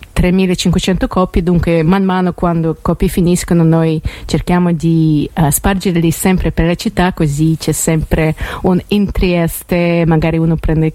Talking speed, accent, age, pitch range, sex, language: 155 wpm, native, 30-49, 155-180 Hz, female, Italian